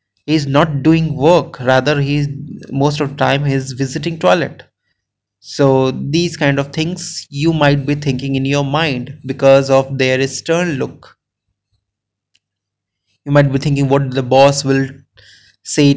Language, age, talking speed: English, 20-39, 145 wpm